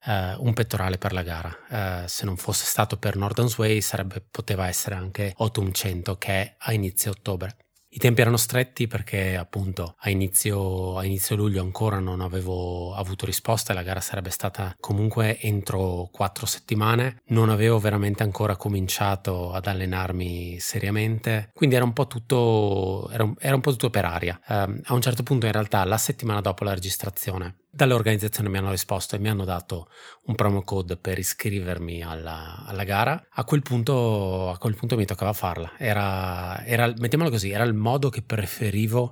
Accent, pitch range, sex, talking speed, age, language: native, 95-110 Hz, male, 180 wpm, 20-39, Italian